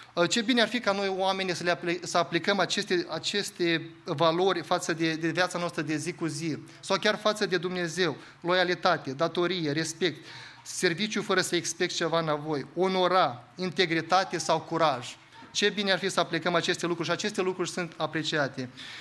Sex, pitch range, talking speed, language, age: male, 155-180 Hz, 170 wpm, English, 20-39